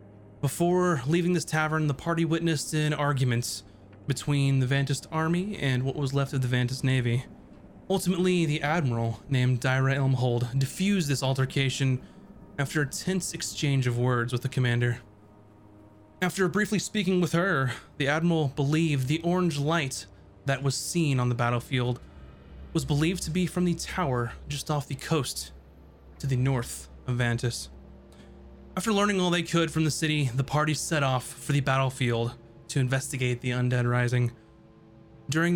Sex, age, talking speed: male, 20-39, 155 wpm